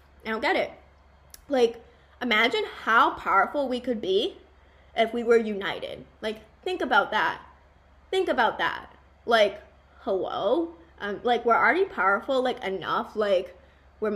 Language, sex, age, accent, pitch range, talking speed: English, female, 10-29, American, 215-295 Hz, 140 wpm